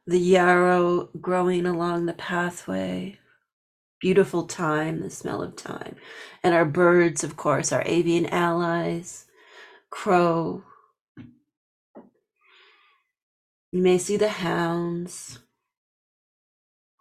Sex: female